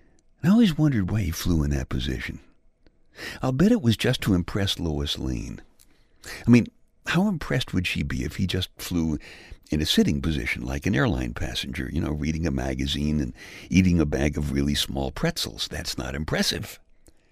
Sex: male